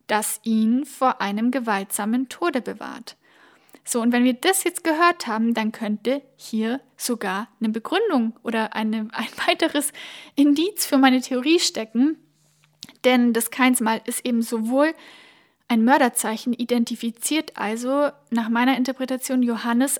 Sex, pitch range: female, 225-270 Hz